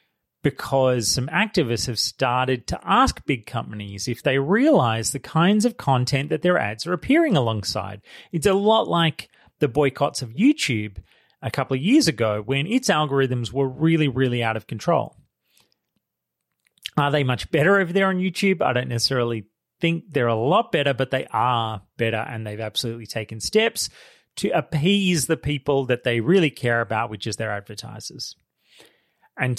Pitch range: 115-155 Hz